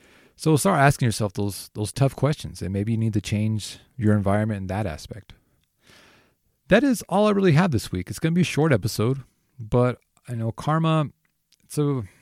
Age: 30-49